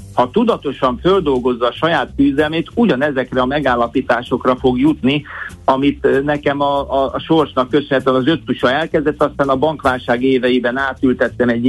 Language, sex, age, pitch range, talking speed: Hungarian, male, 60-79, 130-155 Hz, 140 wpm